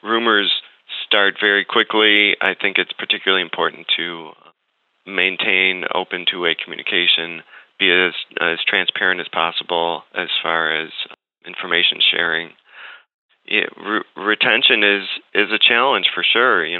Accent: American